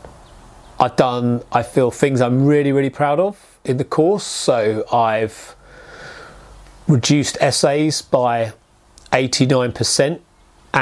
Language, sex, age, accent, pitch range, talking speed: English, male, 30-49, British, 125-150 Hz, 105 wpm